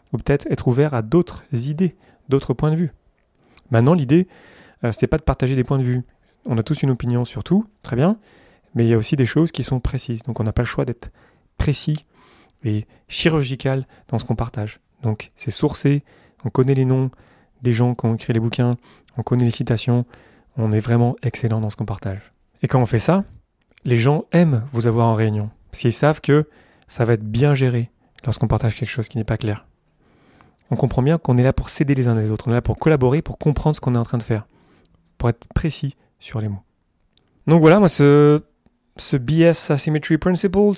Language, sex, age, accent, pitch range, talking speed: French, male, 30-49, French, 115-150 Hz, 220 wpm